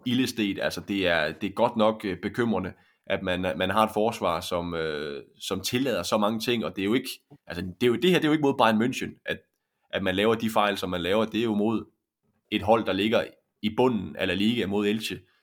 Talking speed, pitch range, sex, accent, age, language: 245 wpm, 95-110 Hz, male, native, 20-39, Danish